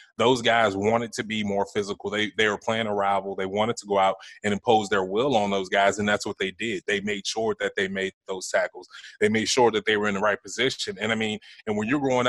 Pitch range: 105-120 Hz